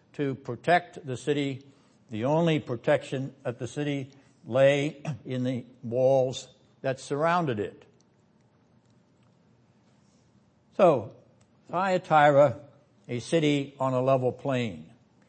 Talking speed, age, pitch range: 100 wpm, 60-79, 120-145 Hz